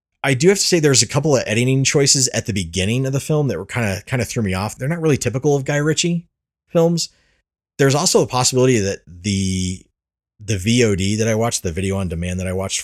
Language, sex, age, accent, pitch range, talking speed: English, male, 30-49, American, 90-120 Hz, 245 wpm